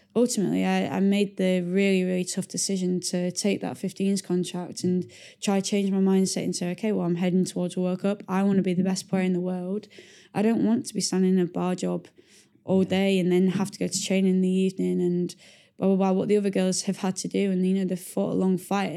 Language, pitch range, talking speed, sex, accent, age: English, 180-195 Hz, 255 wpm, female, British, 10-29